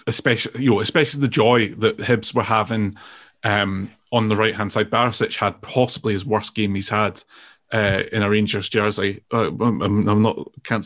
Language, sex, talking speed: English, male, 190 wpm